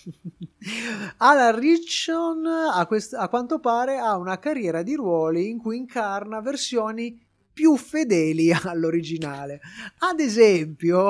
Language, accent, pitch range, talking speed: Italian, native, 150-215 Hz, 105 wpm